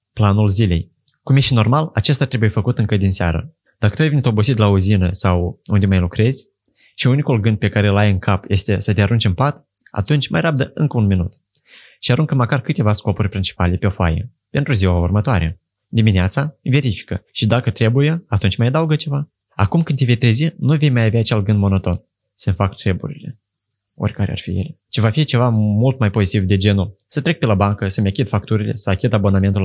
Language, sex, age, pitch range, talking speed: Romanian, male, 20-39, 100-125 Hz, 205 wpm